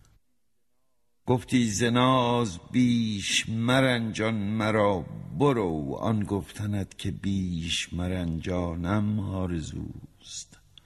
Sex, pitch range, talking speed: male, 90-115 Hz, 65 wpm